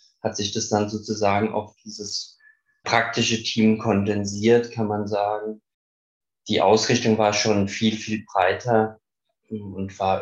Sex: male